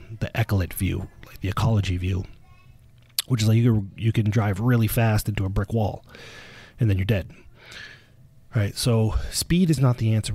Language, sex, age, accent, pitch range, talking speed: English, male, 30-49, American, 105-125 Hz, 185 wpm